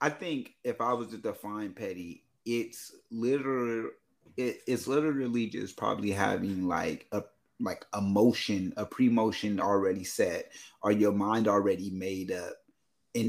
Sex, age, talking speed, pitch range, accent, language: male, 30-49, 145 wpm, 115-155 Hz, American, English